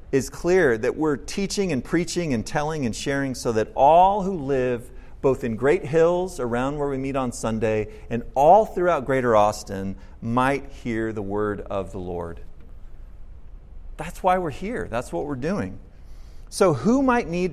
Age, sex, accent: 40-59, male, American